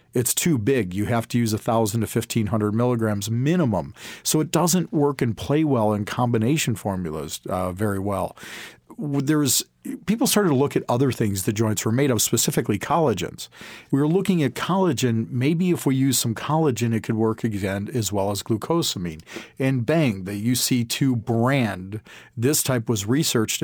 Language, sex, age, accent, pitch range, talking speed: English, male, 40-59, American, 115-140 Hz, 175 wpm